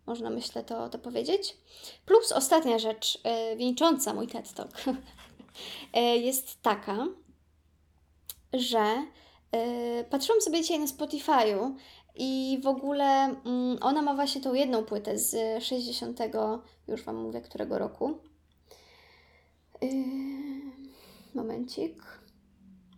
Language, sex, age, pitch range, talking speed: Polish, female, 20-39, 220-280 Hz, 105 wpm